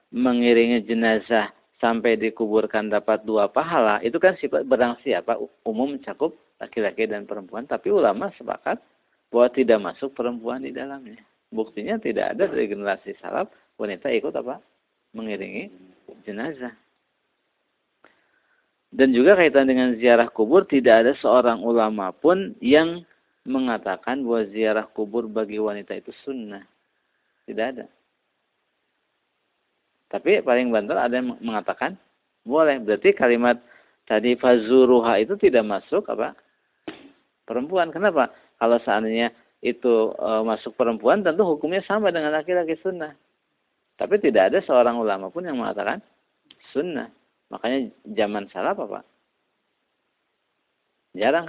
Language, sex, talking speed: Indonesian, male, 120 wpm